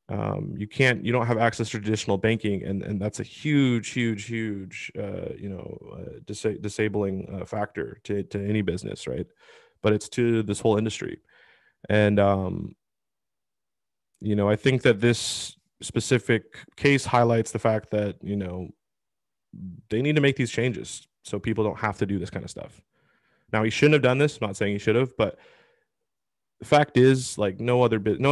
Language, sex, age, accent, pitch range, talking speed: English, male, 20-39, American, 100-120 Hz, 190 wpm